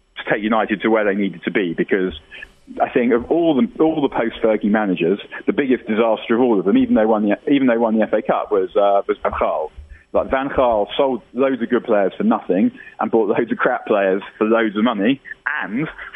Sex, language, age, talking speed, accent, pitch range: male, English, 30-49, 225 wpm, British, 100-115 Hz